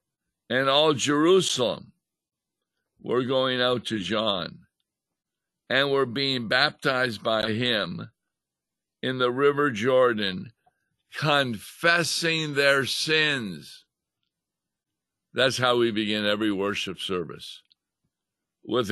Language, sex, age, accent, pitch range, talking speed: English, male, 60-79, American, 105-130 Hz, 90 wpm